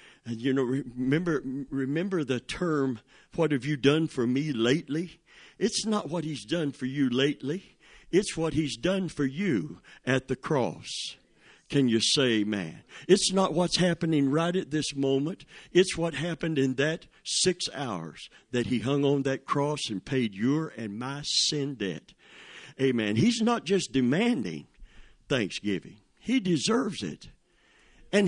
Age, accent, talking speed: 50-69, American, 155 wpm